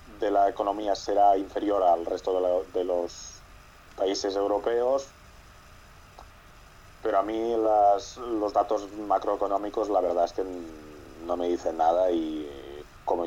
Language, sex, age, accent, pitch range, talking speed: Spanish, male, 30-49, Spanish, 85-110 Hz, 135 wpm